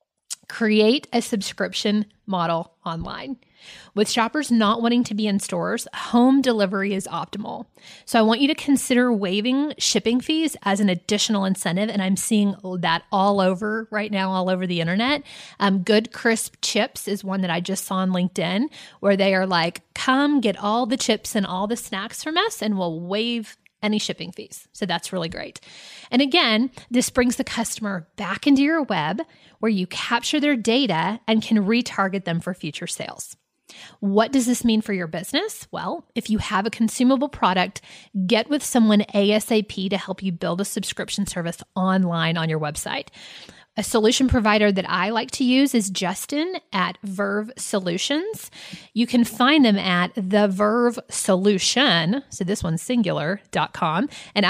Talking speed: 170 wpm